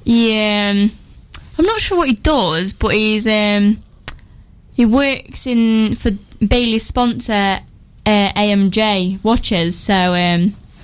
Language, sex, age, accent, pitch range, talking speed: English, female, 10-29, British, 195-235 Hz, 120 wpm